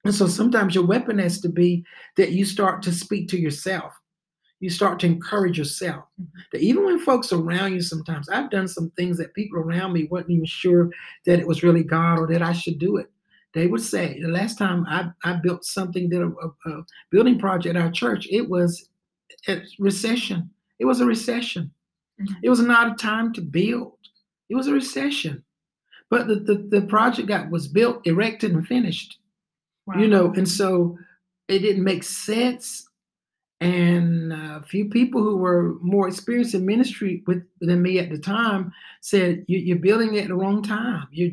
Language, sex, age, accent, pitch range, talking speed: English, male, 60-79, American, 175-205 Hz, 190 wpm